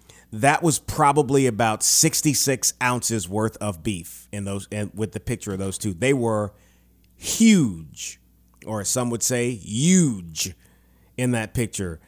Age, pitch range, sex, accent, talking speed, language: 30-49, 100-125 Hz, male, American, 145 wpm, English